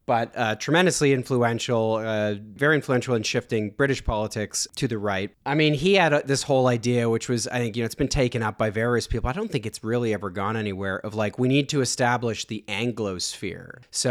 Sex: male